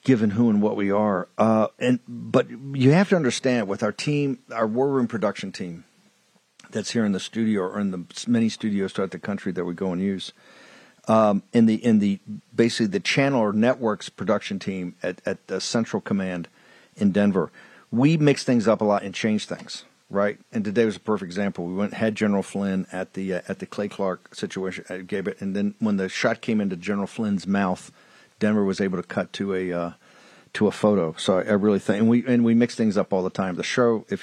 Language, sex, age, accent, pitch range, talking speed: English, male, 50-69, American, 95-125 Hz, 225 wpm